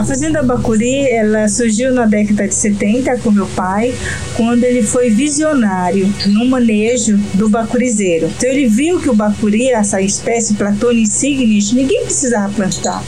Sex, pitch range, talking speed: female, 215-260 Hz, 150 wpm